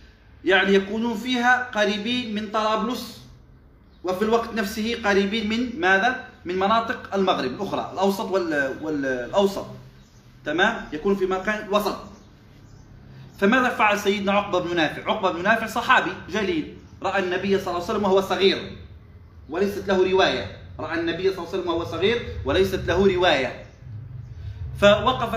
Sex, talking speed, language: male, 135 wpm, Arabic